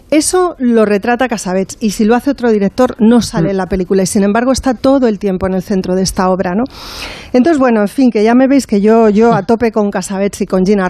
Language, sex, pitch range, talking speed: Spanish, female, 195-235 Hz, 260 wpm